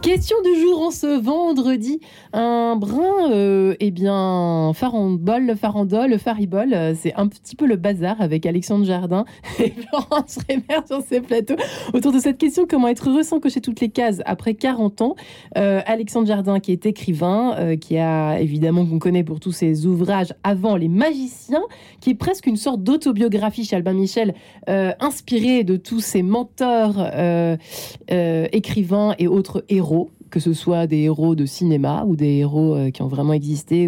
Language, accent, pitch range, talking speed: French, French, 165-230 Hz, 180 wpm